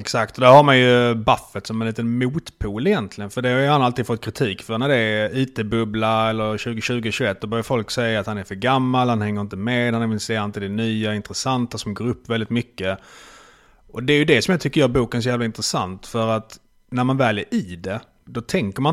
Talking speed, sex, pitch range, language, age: 235 wpm, male, 105-130 Hz, Swedish, 30-49